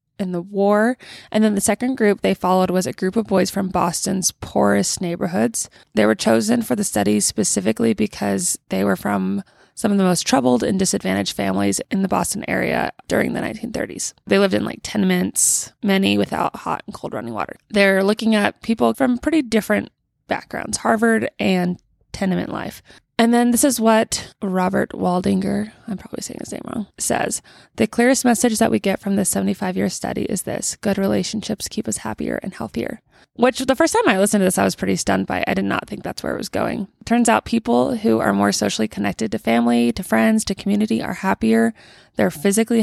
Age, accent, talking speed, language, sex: 20-39, American, 200 wpm, English, female